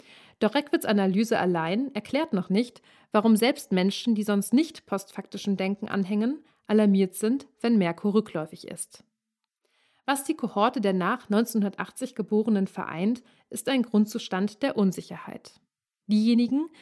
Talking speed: 130 wpm